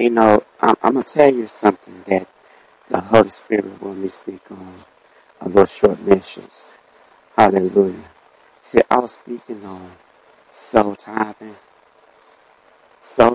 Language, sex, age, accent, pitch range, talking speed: English, male, 60-79, American, 95-110 Hz, 135 wpm